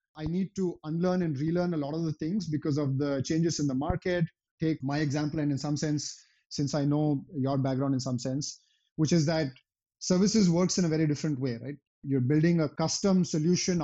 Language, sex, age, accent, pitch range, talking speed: English, male, 30-49, Indian, 140-165 Hz, 215 wpm